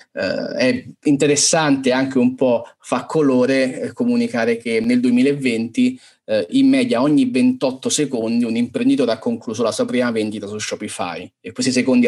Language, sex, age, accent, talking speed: Italian, male, 30-49, native, 155 wpm